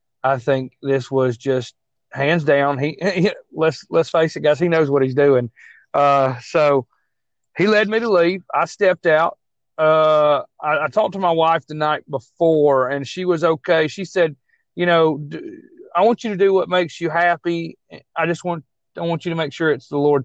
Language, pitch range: English, 130-165 Hz